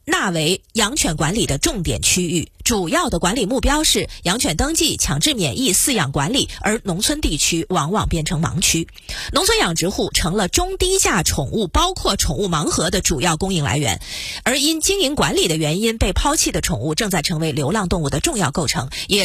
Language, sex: Chinese, female